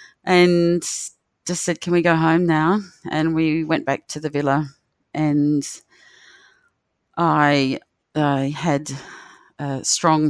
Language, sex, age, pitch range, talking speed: English, female, 30-49, 145-165 Hz, 130 wpm